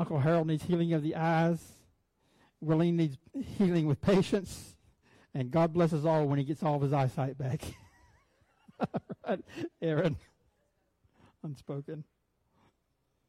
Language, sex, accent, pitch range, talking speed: English, male, American, 140-175 Hz, 115 wpm